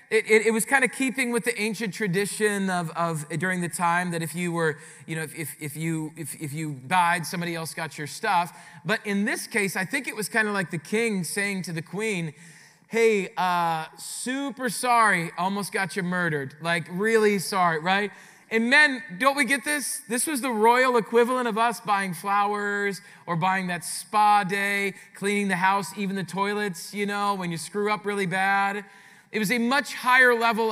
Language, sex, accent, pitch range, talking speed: English, male, American, 170-220 Hz, 205 wpm